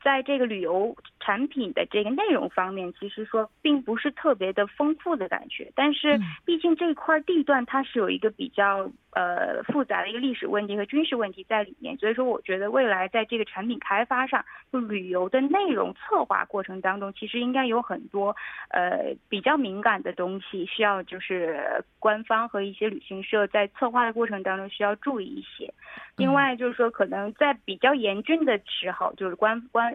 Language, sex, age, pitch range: Korean, female, 20-39, 205-260 Hz